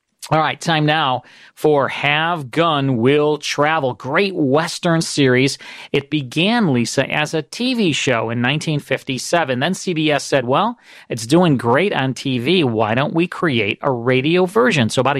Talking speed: 155 wpm